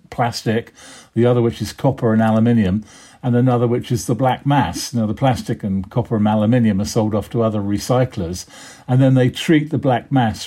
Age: 50-69